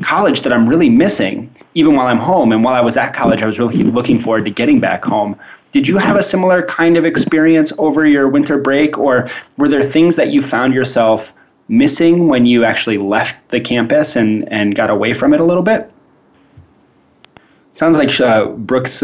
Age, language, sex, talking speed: 20-39, English, male, 200 wpm